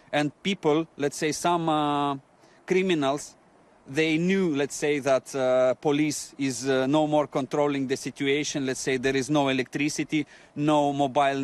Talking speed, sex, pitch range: 150 wpm, male, 135-155 Hz